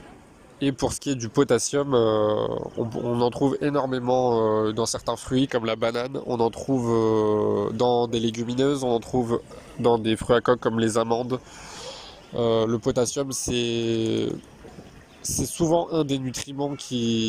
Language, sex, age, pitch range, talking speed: French, male, 20-39, 115-130 Hz, 165 wpm